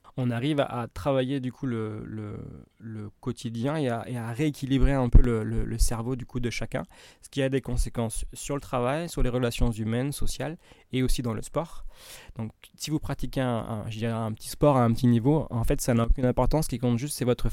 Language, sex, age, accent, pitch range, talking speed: French, male, 20-39, French, 115-130 Hz, 240 wpm